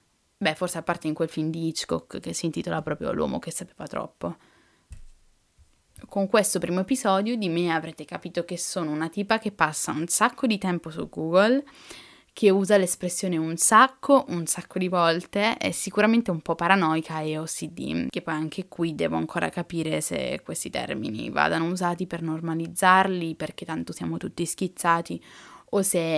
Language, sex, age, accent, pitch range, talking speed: Italian, female, 10-29, native, 160-190 Hz, 170 wpm